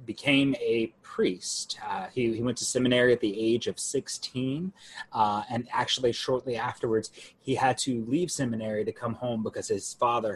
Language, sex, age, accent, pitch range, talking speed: English, male, 30-49, American, 110-155 Hz, 175 wpm